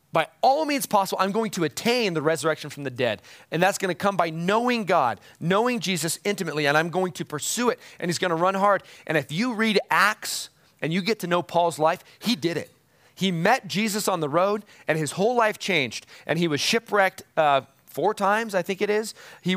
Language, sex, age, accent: English, male, 30-49, American